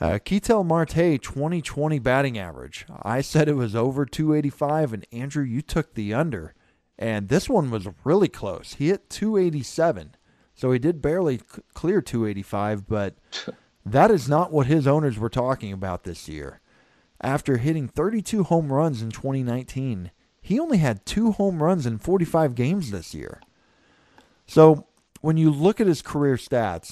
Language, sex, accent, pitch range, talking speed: English, male, American, 105-150 Hz, 160 wpm